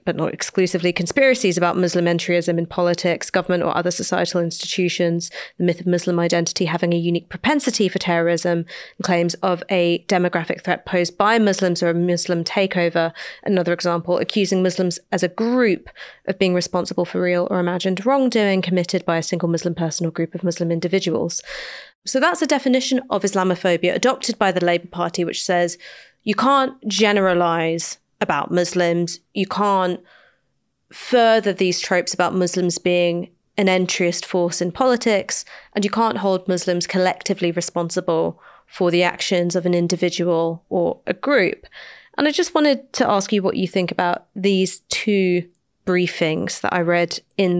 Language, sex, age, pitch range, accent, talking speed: English, female, 30-49, 175-195 Hz, British, 165 wpm